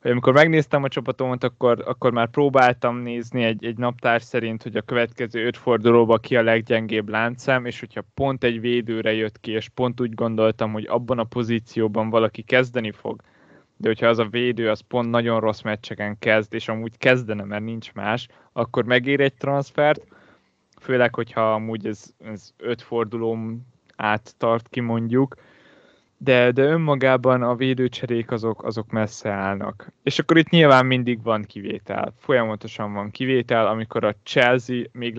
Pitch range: 110-125 Hz